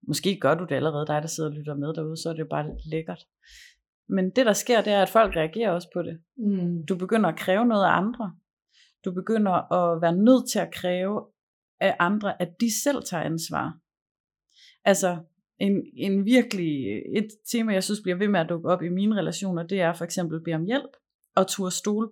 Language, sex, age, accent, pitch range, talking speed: Danish, female, 30-49, native, 170-210 Hz, 215 wpm